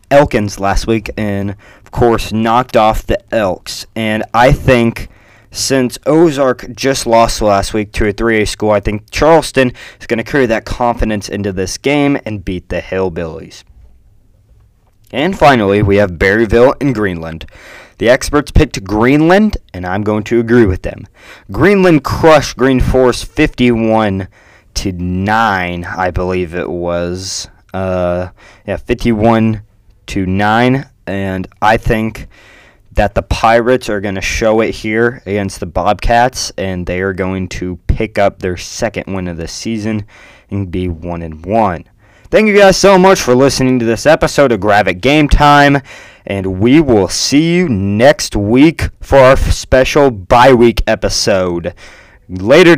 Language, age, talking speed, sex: English, 20-39, 150 wpm, male